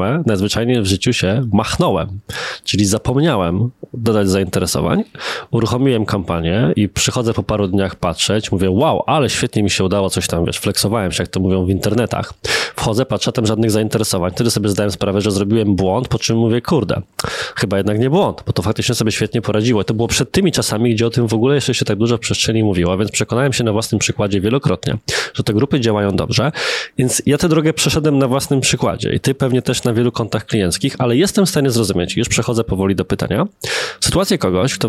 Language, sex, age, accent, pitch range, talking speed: Polish, male, 20-39, native, 100-130 Hz, 205 wpm